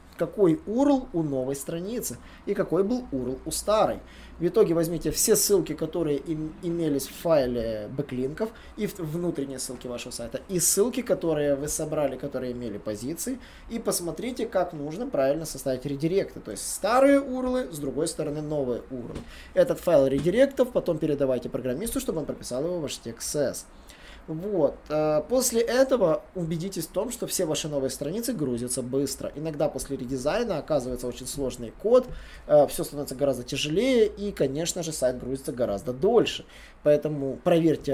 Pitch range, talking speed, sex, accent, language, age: 135-190 Hz, 155 wpm, male, native, Russian, 20-39